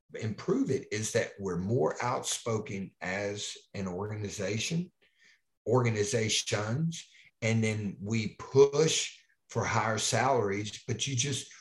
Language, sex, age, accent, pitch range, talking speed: English, male, 50-69, American, 105-130 Hz, 110 wpm